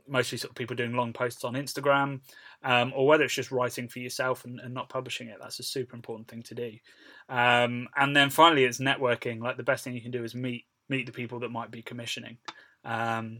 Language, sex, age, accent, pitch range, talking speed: English, male, 20-39, British, 120-130 Hz, 235 wpm